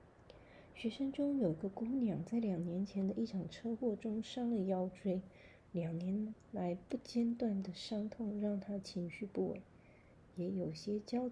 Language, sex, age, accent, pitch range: Chinese, female, 30-49, native, 170-220 Hz